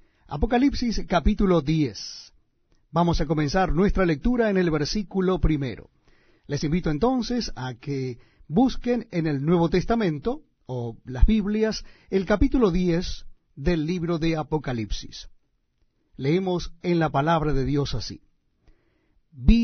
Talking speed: 120 wpm